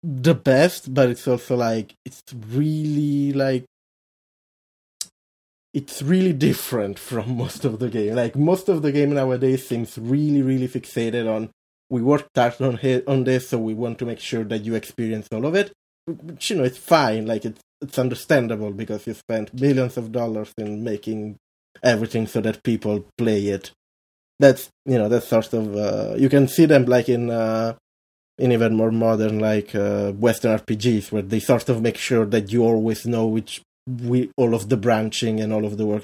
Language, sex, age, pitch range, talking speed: English, male, 20-39, 110-140 Hz, 185 wpm